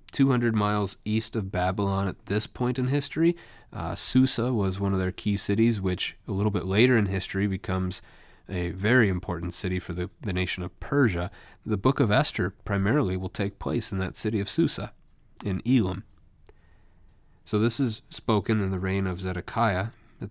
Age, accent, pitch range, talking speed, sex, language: 30-49, American, 95-110 Hz, 180 wpm, male, English